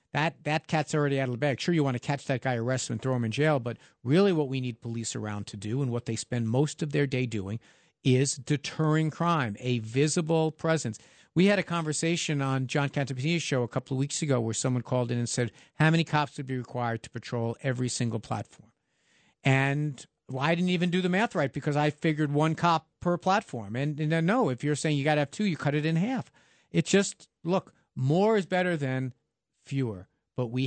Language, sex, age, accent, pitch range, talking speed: English, male, 50-69, American, 125-160 Hz, 235 wpm